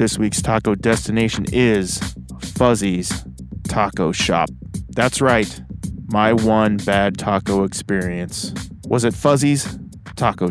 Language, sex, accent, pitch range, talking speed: English, male, American, 100-125 Hz, 110 wpm